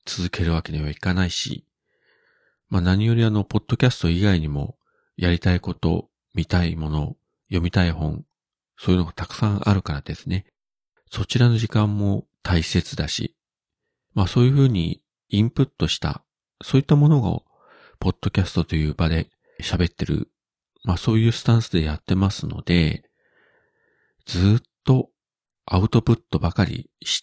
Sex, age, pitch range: male, 40-59, 85-115 Hz